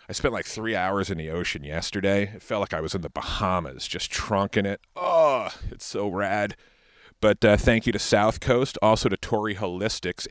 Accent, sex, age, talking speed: American, male, 40-59, 205 wpm